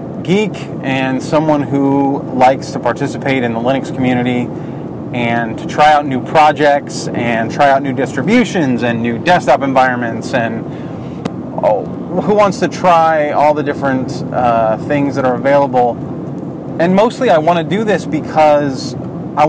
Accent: American